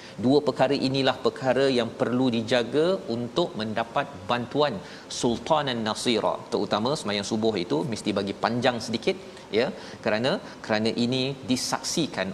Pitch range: 110-140 Hz